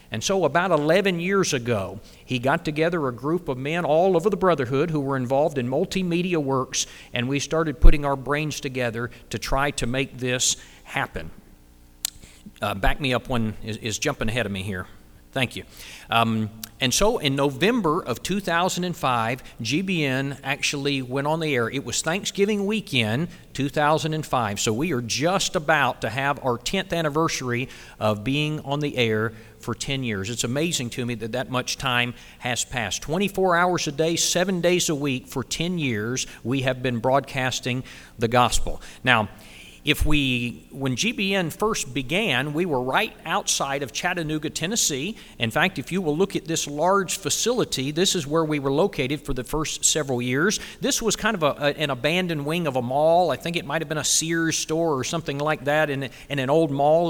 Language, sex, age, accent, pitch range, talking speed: English, male, 50-69, American, 125-170 Hz, 185 wpm